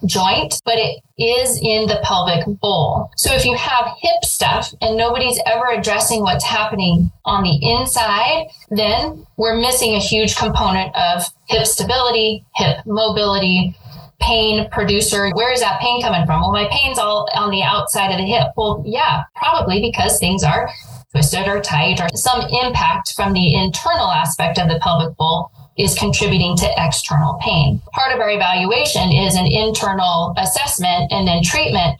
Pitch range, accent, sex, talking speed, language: 170-220 Hz, American, female, 165 wpm, English